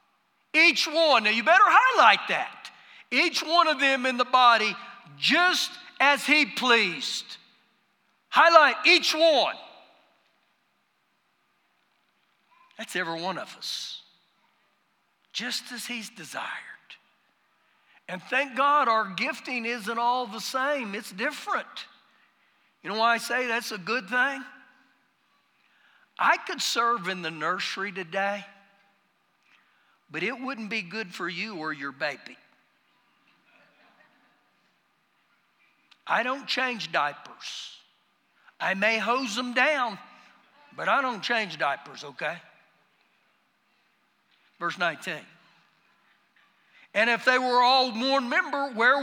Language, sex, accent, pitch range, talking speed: English, male, American, 215-285 Hz, 115 wpm